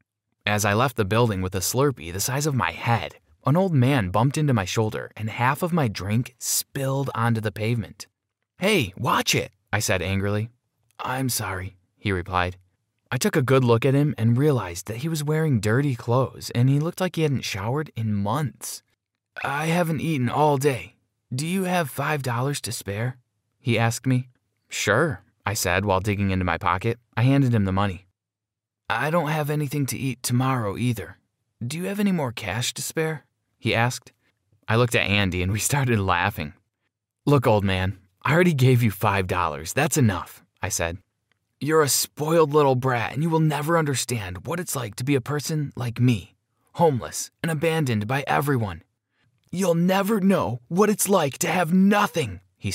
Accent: American